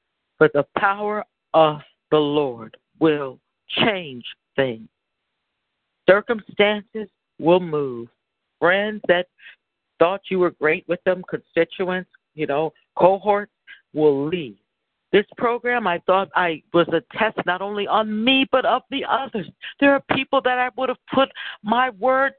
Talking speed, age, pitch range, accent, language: 140 wpm, 60-79, 175-280 Hz, American, English